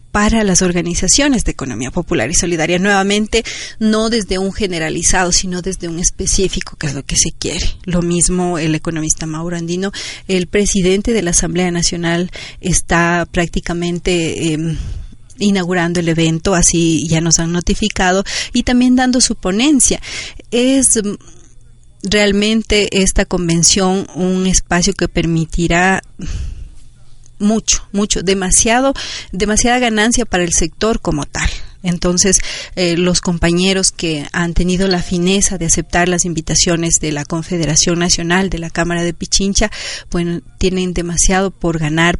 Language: Spanish